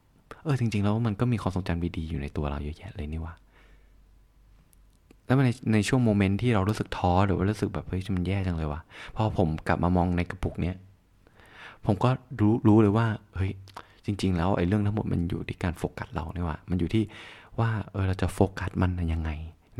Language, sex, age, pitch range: Thai, male, 20-39, 85-105 Hz